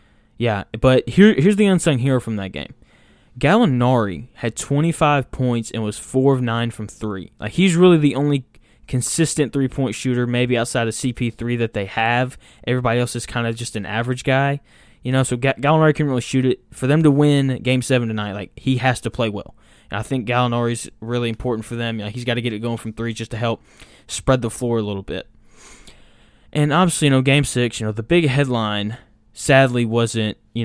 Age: 10-29